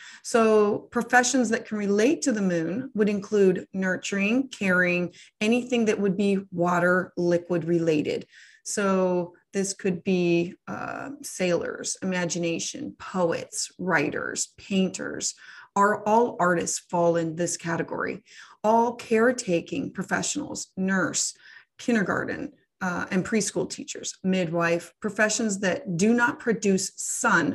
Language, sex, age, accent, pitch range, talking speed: English, female, 30-49, American, 180-230 Hz, 115 wpm